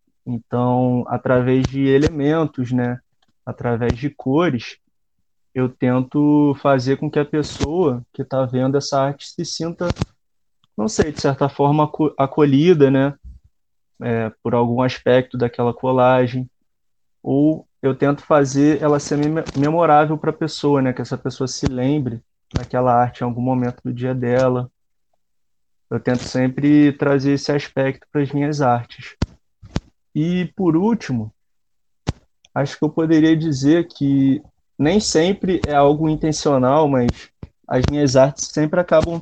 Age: 20-39